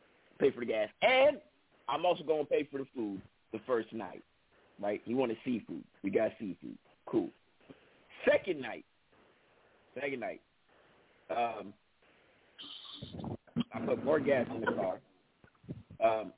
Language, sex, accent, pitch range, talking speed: English, male, American, 110-165 Hz, 135 wpm